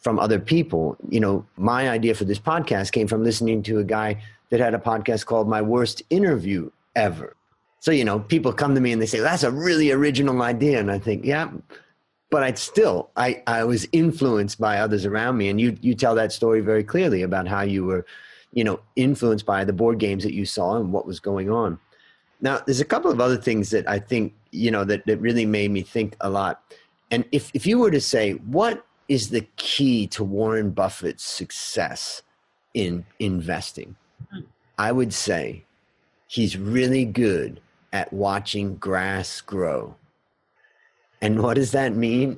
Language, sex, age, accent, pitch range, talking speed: English, male, 30-49, American, 105-130 Hz, 190 wpm